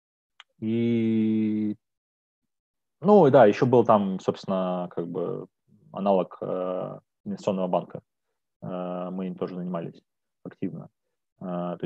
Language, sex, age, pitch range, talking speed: Russian, male, 20-39, 95-110 Hz, 100 wpm